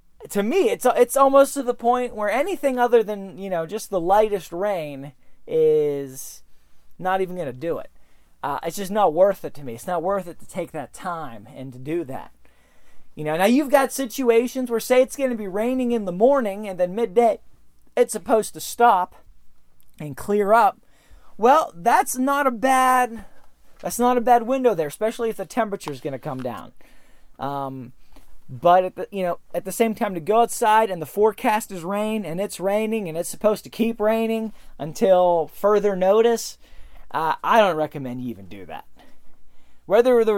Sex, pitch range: male, 150-230 Hz